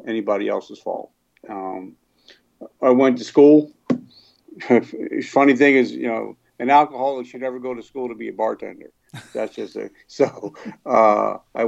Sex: male